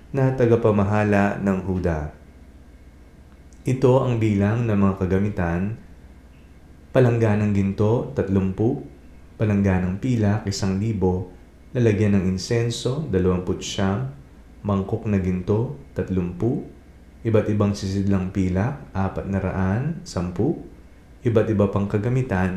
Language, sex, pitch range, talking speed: Filipino, male, 85-110 Hz, 90 wpm